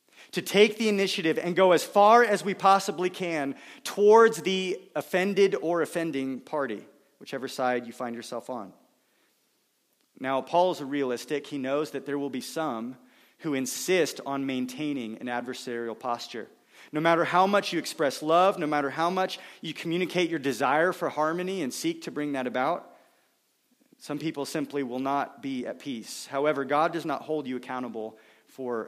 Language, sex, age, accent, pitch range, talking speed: English, male, 30-49, American, 130-170 Hz, 170 wpm